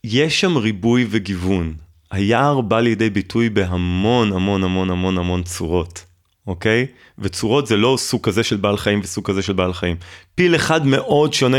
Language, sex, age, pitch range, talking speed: Hebrew, male, 30-49, 95-120 Hz, 165 wpm